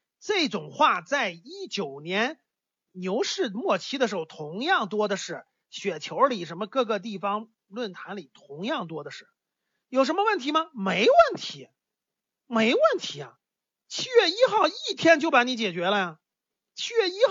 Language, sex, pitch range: Chinese, male, 200-315 Hz